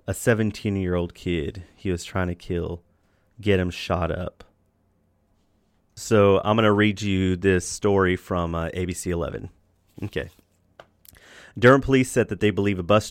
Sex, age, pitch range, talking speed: male, 30-49, 95-110 Hz, 150 wpm